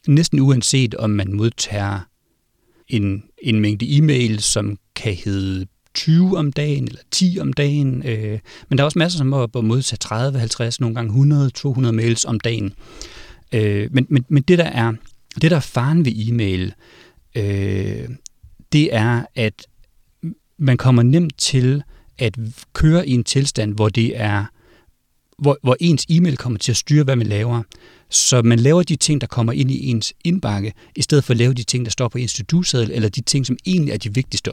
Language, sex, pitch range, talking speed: Danish, male, 110-140 Hz, 170 wpm